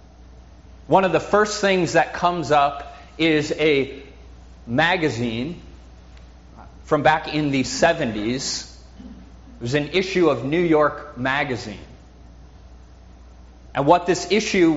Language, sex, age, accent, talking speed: English, male, 30-49, American, 115 wpm